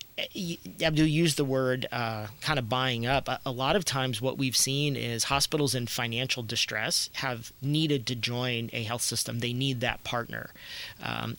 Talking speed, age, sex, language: 185 wpm, 40-59, male, English